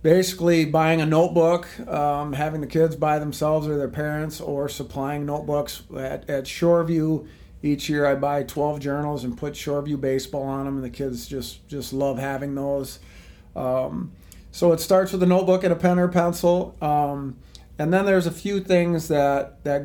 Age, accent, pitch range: 40-59, American, 135-160 Hz